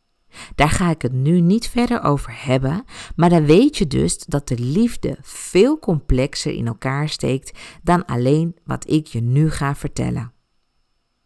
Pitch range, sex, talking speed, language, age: 130-200 Hz, female, 160 wpm, Dutch, 50-69